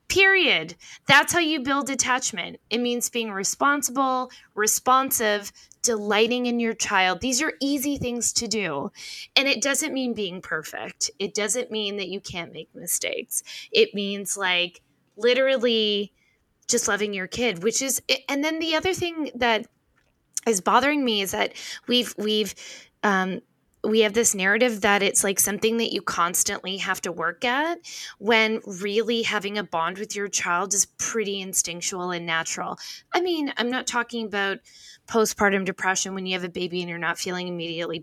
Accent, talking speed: American, 165 wpm